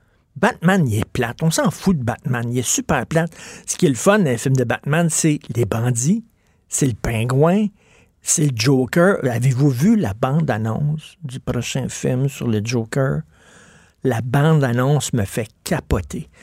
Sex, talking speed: male, 170 wpm